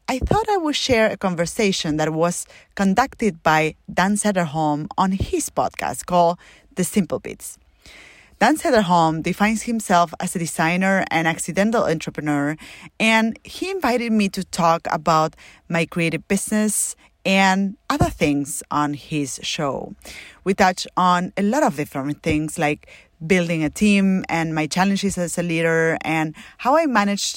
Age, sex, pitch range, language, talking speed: 30-49, female, 160-200 Hz, English, 150 wpm